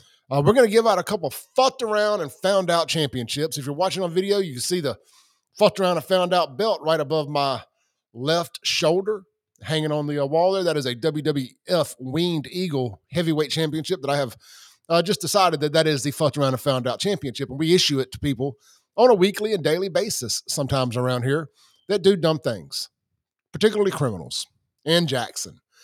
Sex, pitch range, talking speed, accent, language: male, 140-190 Hz, 205 wpm, American, English